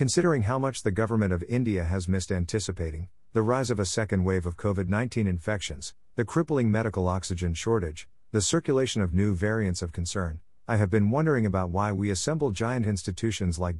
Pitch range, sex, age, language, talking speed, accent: 90-120 Hz, male, 50-69, English, 185 wpm, American